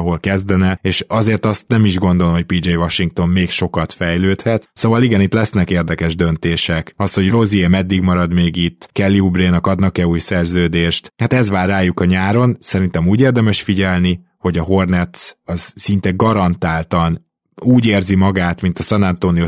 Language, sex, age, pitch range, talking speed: Hungarian, male, 20-39, 85-105 Hz, 170 wpm